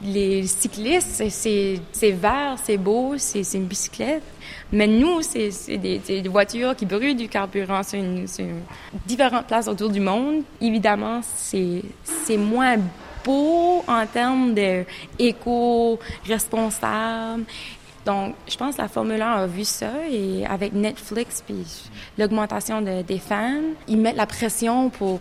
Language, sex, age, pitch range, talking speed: French, female, 20-39, 195-235 Hz, 150 wpm